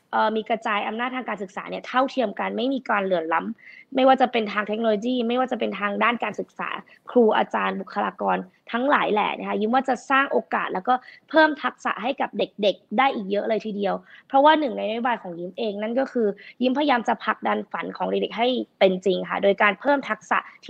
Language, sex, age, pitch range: Thai, female, 20-39, 205-250 Hz